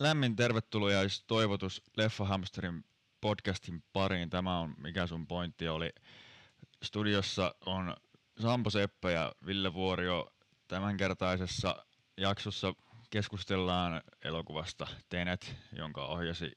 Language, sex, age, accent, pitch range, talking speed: Finnish, male, 20-39, native, 80-100 Hz, 100 wpm